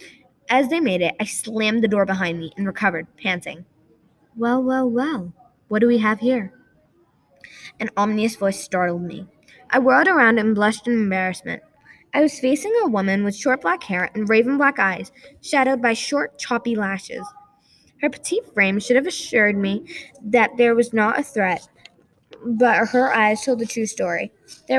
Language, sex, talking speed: English, female, 175 wpm